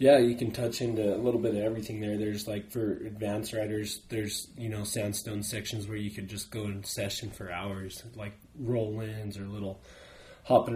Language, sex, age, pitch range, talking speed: English, male, 20-39, 100-115 Hz, 195 wpm